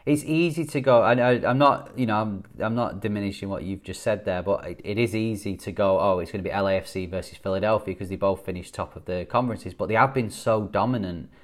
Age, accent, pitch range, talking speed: 30-49, British, 100-120 Hz, 240 wpm